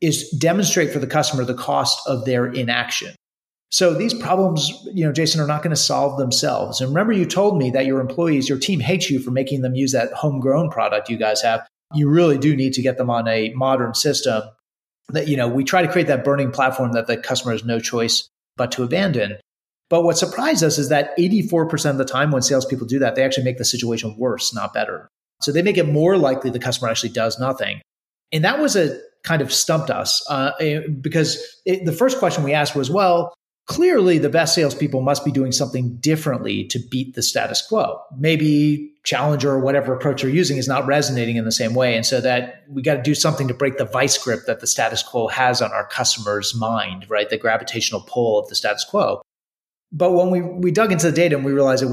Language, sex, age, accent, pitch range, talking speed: English, male, 30-49, American, 125-160 Hz, 225 wpm